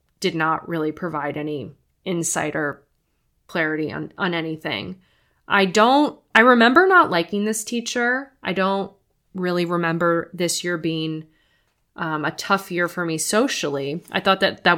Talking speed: 150 wpm